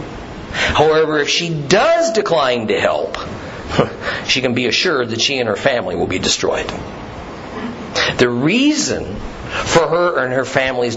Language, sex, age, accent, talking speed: English, male, 50-69, American, 140 wpm